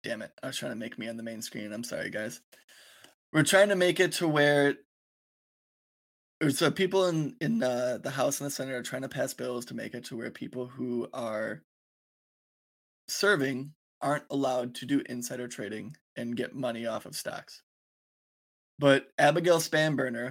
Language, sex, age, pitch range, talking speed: English, male, 20-39, 130-150 Hz, 180 wpm